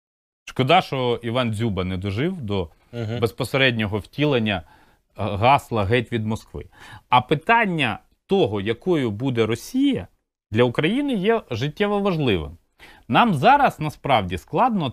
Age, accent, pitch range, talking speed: 30-49, native, 105-145 Hz, 115 wpm